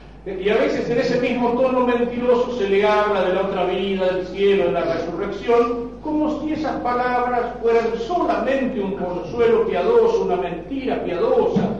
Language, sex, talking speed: Spanish, male, 165 wpm